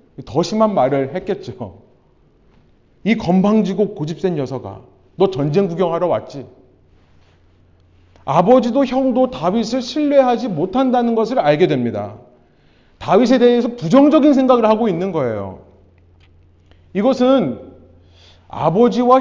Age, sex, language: 40-59, male, Korean